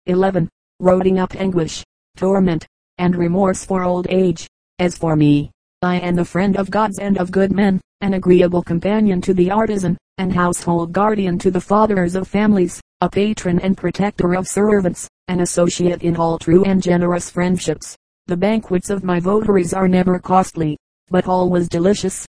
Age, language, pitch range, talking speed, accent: 30-49, English, 180-195 Hz, 165 wpm, American